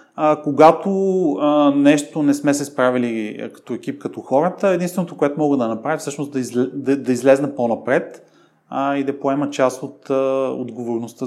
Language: Bulgarian